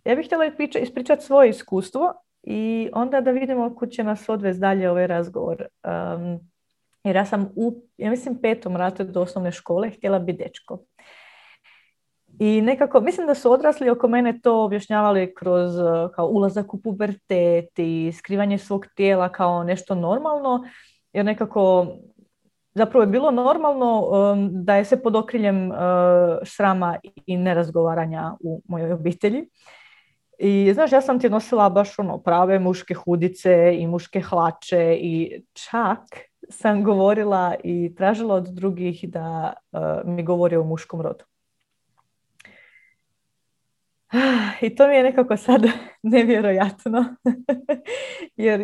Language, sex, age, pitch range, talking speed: Croatian, female, 30-49, 180-240 Hz, 135 wpm